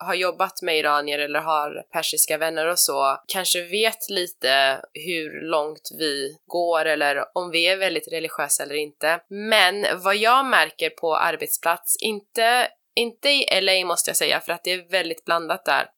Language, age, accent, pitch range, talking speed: Swedish, 20-39, native, 155-195 Hz, 170 wpm